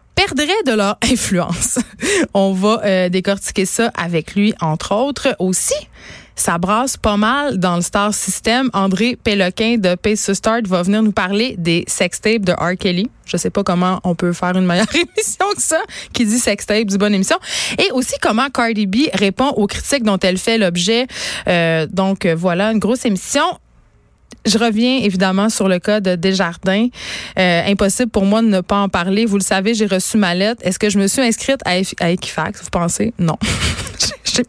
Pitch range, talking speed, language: 185-230 Hz, 195 wpm, French